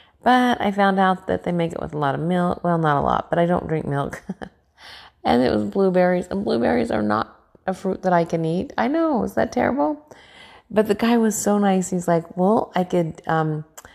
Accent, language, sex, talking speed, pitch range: American, English, female, 230 wpm, 155-195 Hz